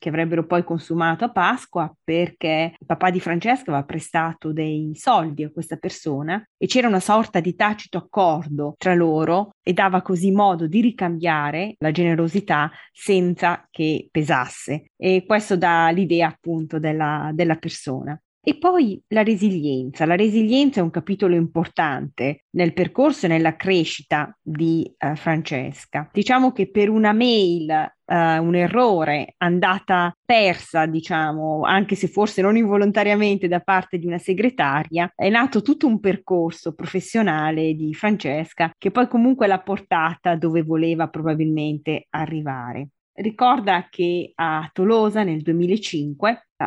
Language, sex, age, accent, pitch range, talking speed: Italian, female, 30-49, native, 160-200 Hz, 140 wpm